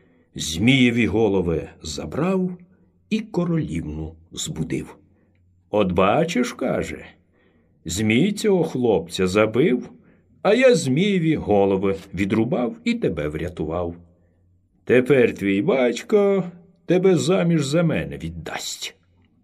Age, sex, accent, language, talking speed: 60-79, male, native, Ukrainian, 90 wpm